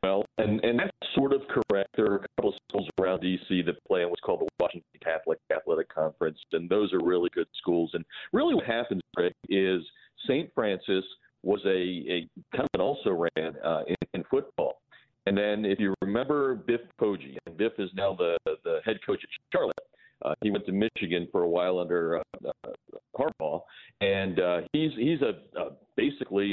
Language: English